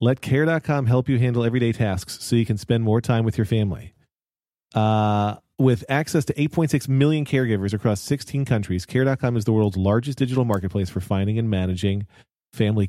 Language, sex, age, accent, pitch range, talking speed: English, male, 40-59, American, 110-140 Hz, 175 wpm